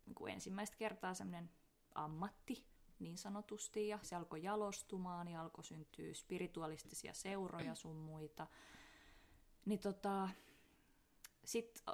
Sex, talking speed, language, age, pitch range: female, 110 wpm, Finnish, 20-39, 155-200 Hz